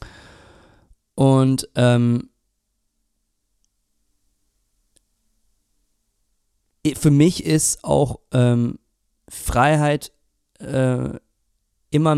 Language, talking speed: German, 50 wpm